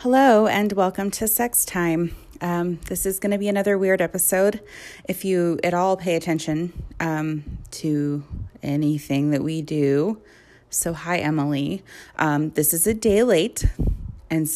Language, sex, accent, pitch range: English, female, American, 155-195 Hz